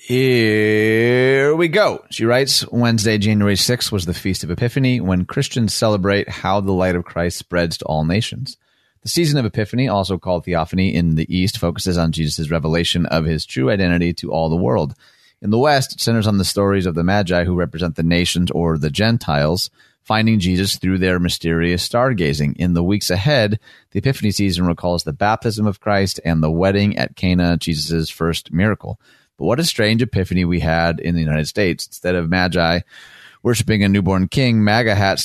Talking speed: 185 wpm